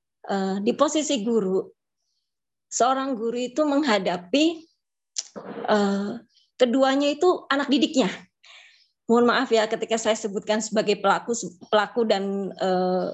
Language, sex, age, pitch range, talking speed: Indonesian, female, 20-39, 200-240 Hz, 110 wpm